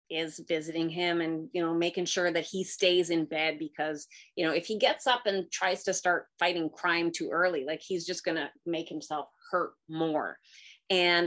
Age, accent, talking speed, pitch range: 30-49, American, 200 wpm, 165-205 Hz